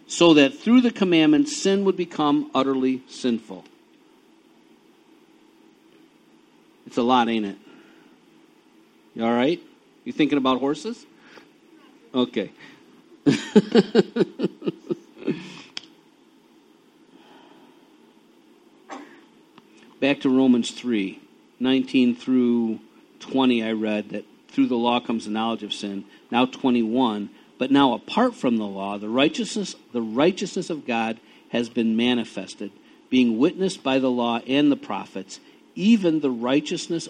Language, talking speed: English, 110 wpm